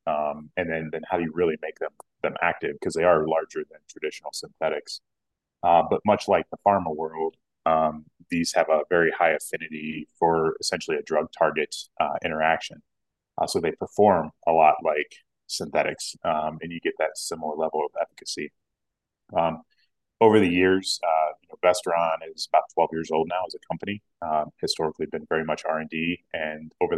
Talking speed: 180 wpm